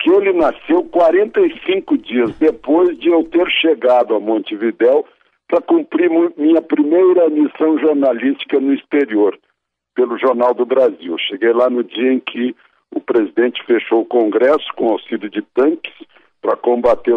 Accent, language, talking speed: Brazilian, Portuguese, 150 wpm